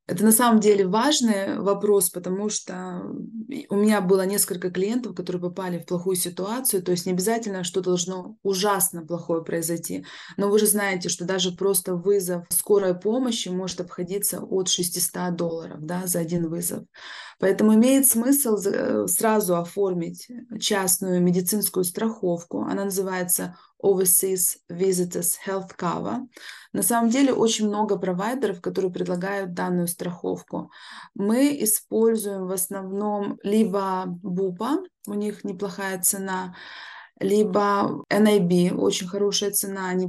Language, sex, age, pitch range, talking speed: Russian, female, 20-39, 180-215 Hz, 130 wpm